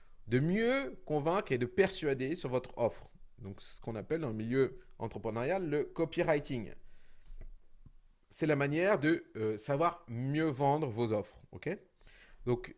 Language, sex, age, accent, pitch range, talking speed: French, male, 30-49, French, 115-155 Hz, 145 wpm